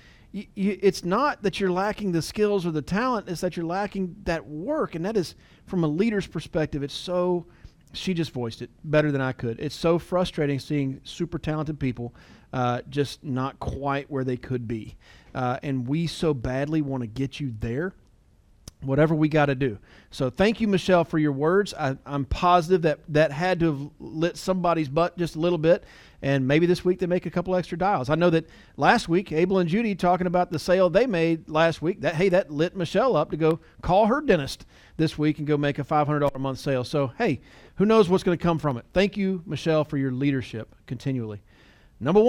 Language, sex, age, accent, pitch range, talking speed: English, male, 40-59, American, 130-180 Hz, 210 wpm